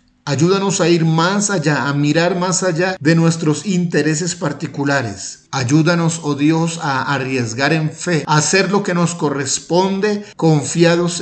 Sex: male